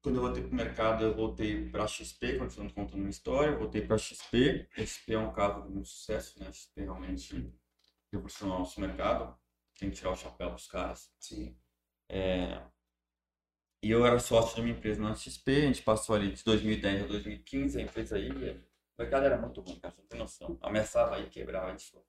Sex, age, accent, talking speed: male, 20-39, Brazilian, 210 wpm